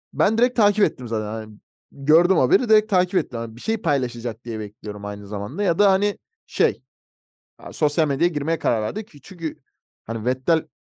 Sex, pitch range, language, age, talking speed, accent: male, 120-170 Hz, Turkish, 30-49, 180 wpm, native